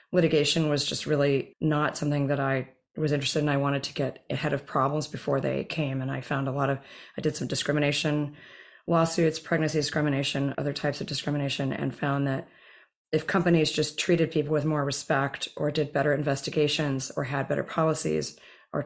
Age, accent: 30-49, American